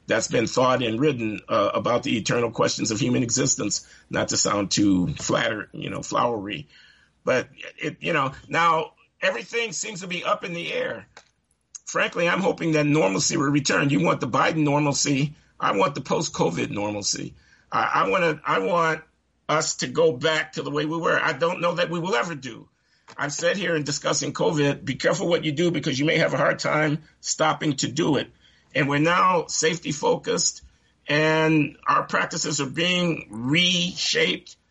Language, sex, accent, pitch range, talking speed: English, male, American, 145-170 Hz, 185 wpm